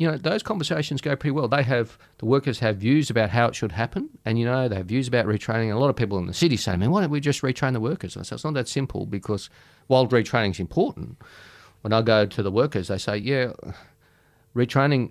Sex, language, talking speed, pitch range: male, English, 260 wpm, 100-130 Hz